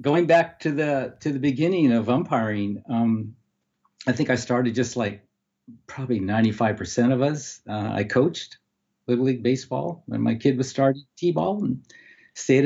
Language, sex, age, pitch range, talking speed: English, male, 60-79, 105-135 Hz, 175 wpm